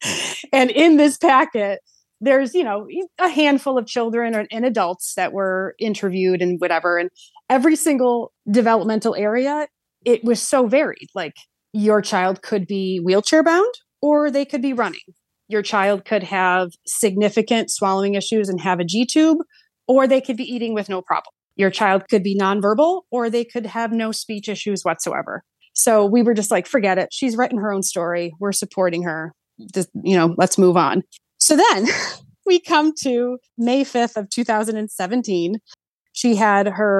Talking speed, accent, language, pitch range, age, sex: 165 wpm, American, English, 185-240 Hz, 30-49, female